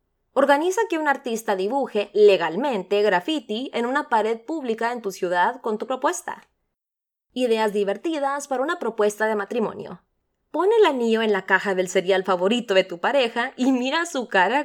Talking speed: 165 wpm